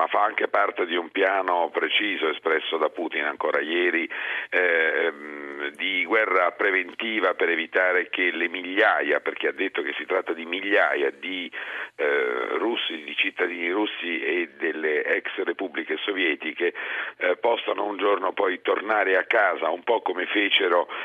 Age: 50-69